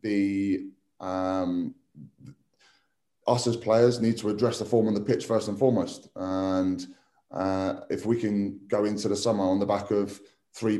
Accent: British